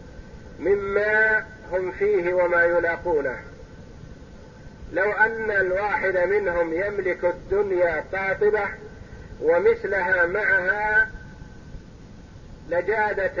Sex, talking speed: male, 65 wpm